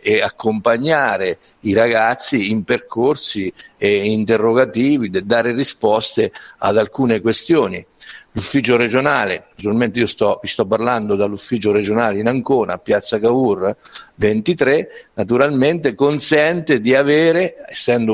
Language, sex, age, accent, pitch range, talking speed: Italian, male, 50-69, native, 110-165 Hz, 105 wpm